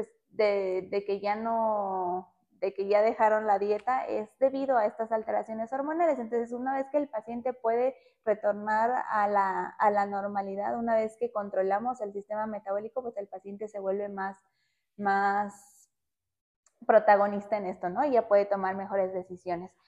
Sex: female